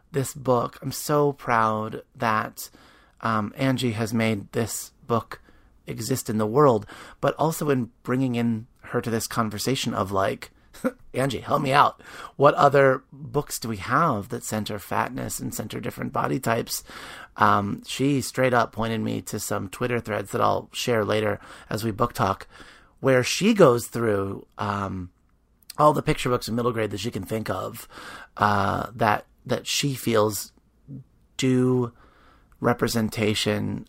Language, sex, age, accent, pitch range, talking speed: English, male, 30-49, American, 110-135 Hz, 155 wpm